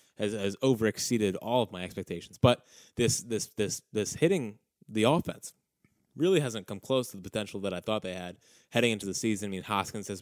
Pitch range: 100-115 Hz